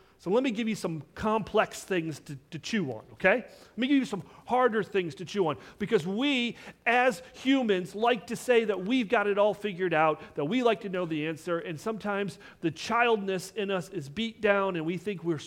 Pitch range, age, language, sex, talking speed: 170-240 Hz, 40-59, English, male, 220 wpm